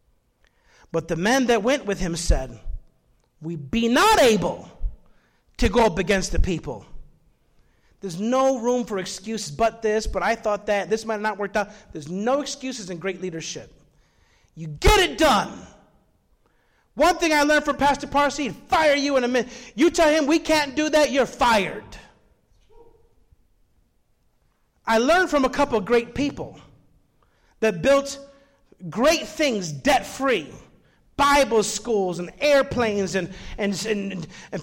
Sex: male